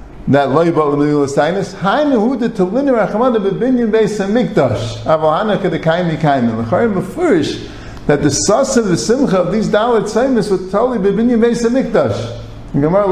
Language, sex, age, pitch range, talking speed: English, male, 50-69, 155-205 Hz, 165 wpm